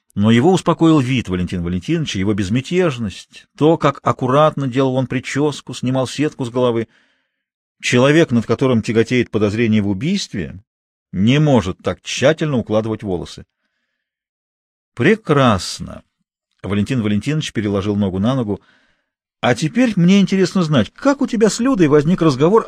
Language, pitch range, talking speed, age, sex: Russian, 105-160 Hz, 130 wpm, 50-69, male